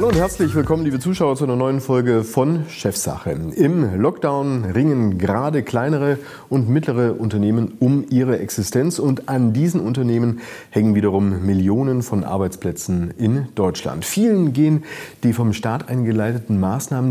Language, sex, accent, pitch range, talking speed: German, male, German, 90-130 Hz, 140 wpm